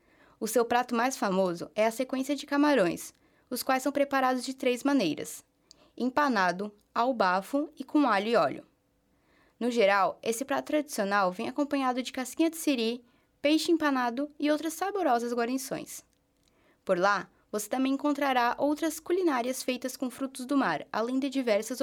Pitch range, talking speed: 215-285 Hz, 155 wpm